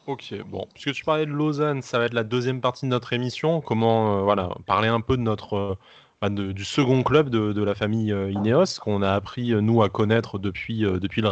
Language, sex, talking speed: French, male, 245 wpm